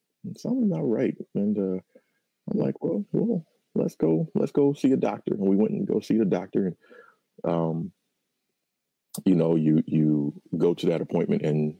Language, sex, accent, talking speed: English, male, American, 180 wpm